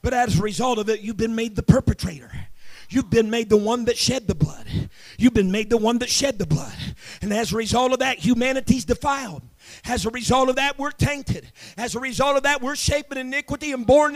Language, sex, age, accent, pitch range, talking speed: English, male, 40-59, American, 255-335 Hz, 235 wpm